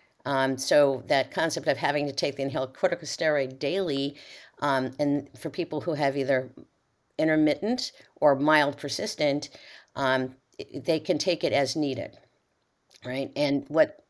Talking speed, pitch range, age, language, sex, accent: 140 wpm, 130-160 Hz, 50-69, English, female, American